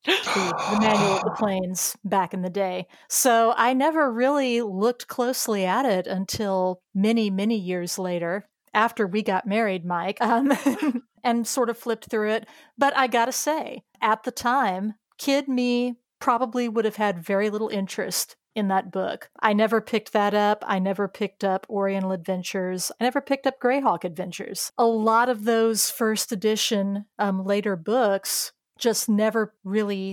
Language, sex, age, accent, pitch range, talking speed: English, female, 40-59, American, 190-235 Hz, 165 wpm